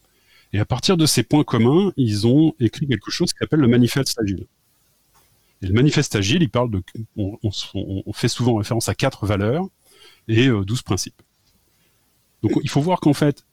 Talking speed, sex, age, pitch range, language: 190 wpm, male, 30-49, 110-150 Hz, French